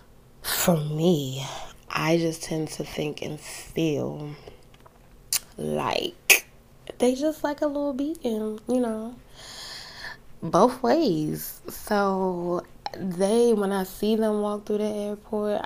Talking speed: 115 wpm